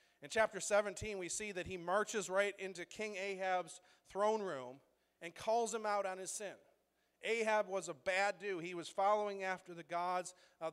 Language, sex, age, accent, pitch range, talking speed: English, male, 40-59, American, 175-210 Hz, 185 wpm